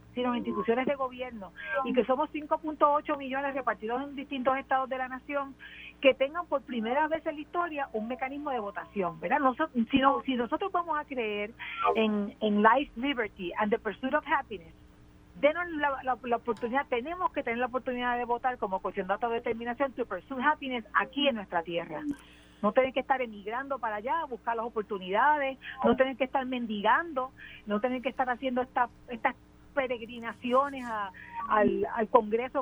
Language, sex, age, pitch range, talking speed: Spanish, female, 40-59, 220-285 Hz, 175 wpm